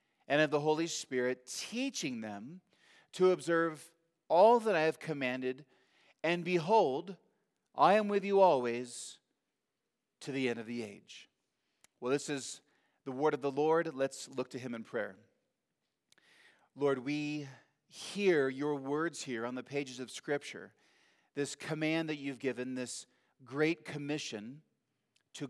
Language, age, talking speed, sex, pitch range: English, 40-59, 145 wpm, male, 125-160 Hz